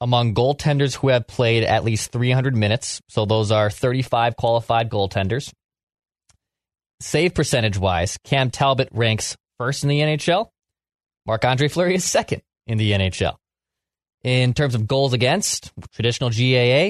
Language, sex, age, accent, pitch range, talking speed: English, male, 20-39, American, 110-145 Hz, 135 wpm